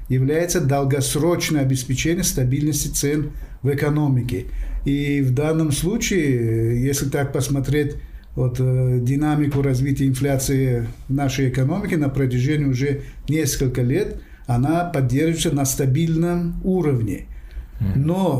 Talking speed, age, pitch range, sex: 110 wpm, 50-69, 135-160 Hz, male